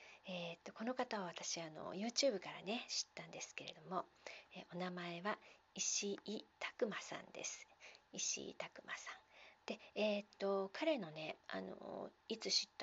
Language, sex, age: Japanese, female, 40-59